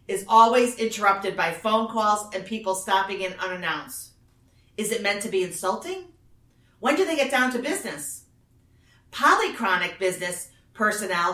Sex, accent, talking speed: female, American, 145 wpm